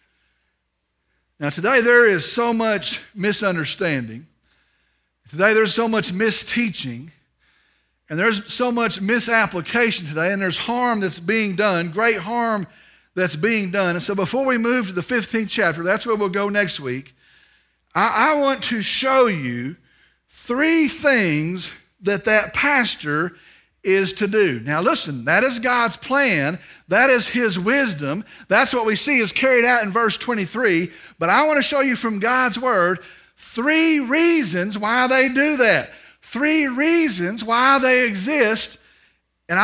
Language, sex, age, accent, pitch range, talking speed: English, male, 50-69, American, 185-260 Hz, 150 wpm